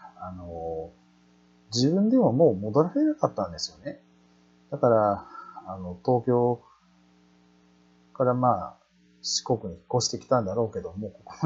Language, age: Japanese, 30-49